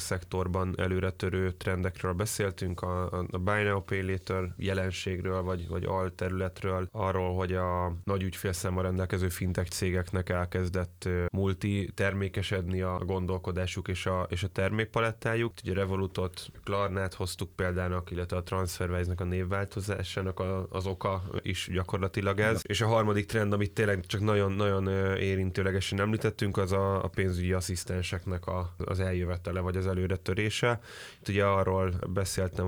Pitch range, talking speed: 90-100 Hz, 130 wpm